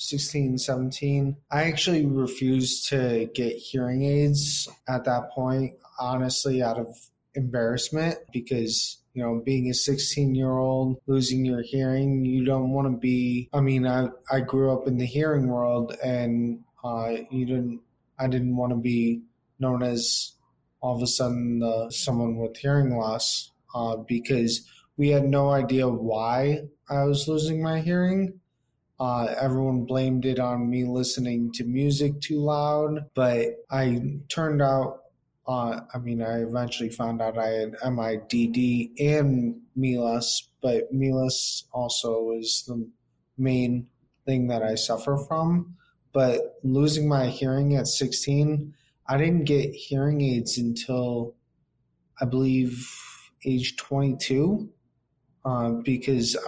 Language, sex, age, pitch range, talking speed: English, male, 20-39, 120-140 Hz, 140 wpm